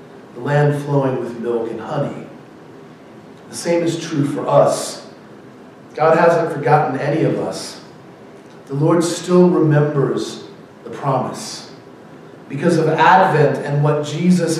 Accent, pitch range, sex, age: American, 150-190 Hz, male, 40-59